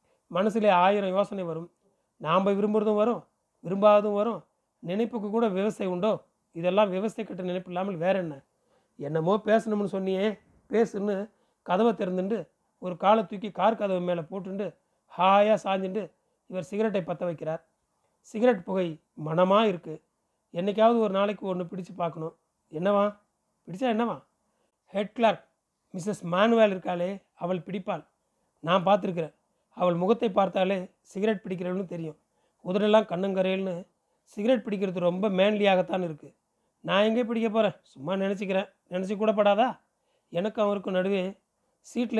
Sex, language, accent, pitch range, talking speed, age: male, Tamil, native, 180-210 Hz, 120 wpm, 30-49